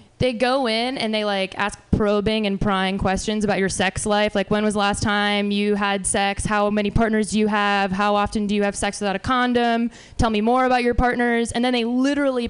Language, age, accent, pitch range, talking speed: English, 20-39, American, 200-240 Hz, 235 wpm